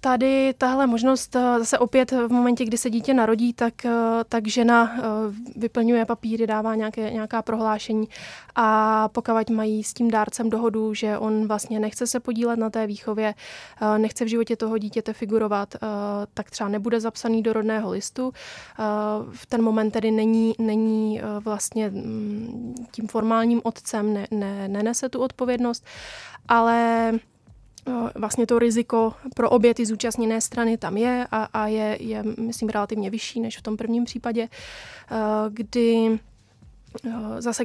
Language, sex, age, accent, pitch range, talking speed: Czech, female, 20-39, native, 215-235 Hz, 140 wpm